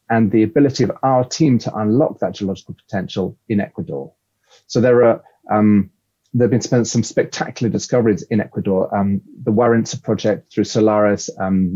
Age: 30-49